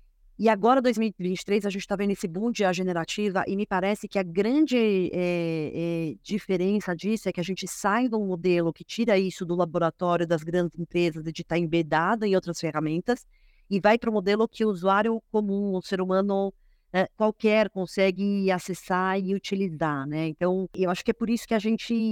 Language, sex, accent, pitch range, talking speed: Portuguese, female, Brazilian, 180-220 Hz, 200 wpm